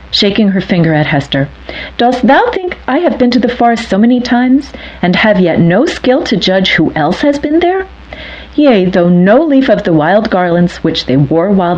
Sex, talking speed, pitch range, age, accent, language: female, 210 wpm, 150-220 Hz, 40-59, American, English